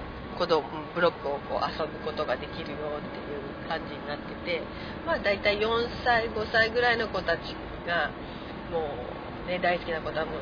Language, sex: Japanese, female